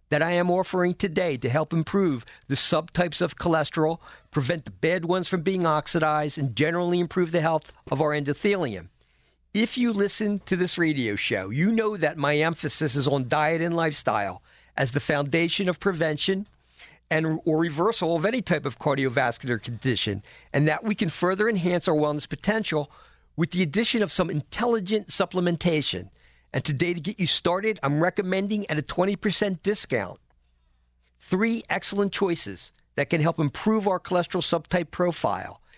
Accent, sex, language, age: American, male, English, 50-69